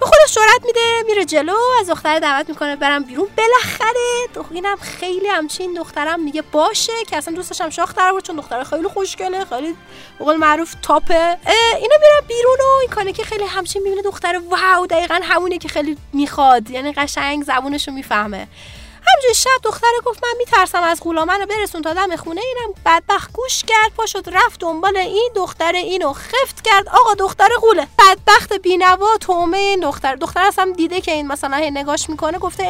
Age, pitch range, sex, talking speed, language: 20-39, 270-370 Hz, female, 180 wpm, Persian